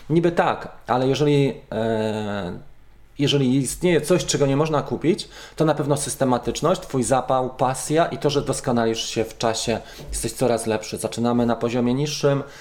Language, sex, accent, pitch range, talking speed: Polish, male, native, 110-140 Hz, 150 wpm